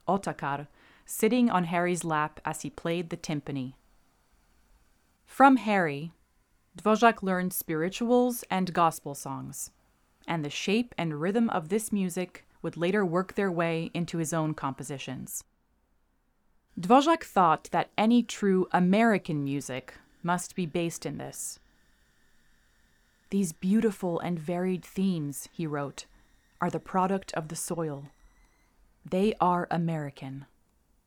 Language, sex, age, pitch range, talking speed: English, female, 30-49, 150-195 Hz, 120 wpm